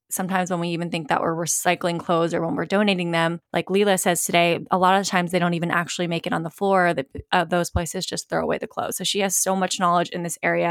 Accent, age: American, 20-39